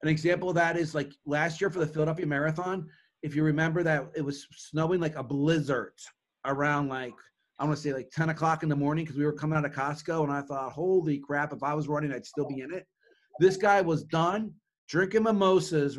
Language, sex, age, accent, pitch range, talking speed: English, male, 30-49, American, 145-175 Hz, 230 wpm